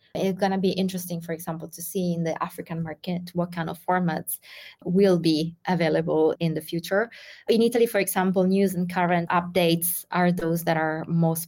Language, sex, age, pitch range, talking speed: English, female, 20-39, 165-190 Hz, 190 wpm